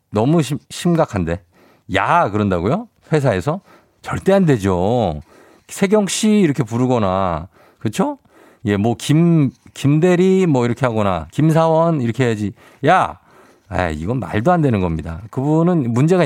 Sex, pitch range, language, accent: male, 100-150 Hz, Korean, native